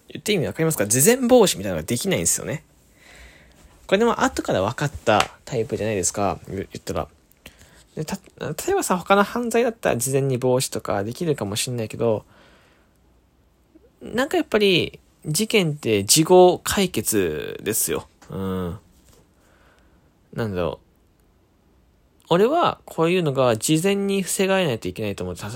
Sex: male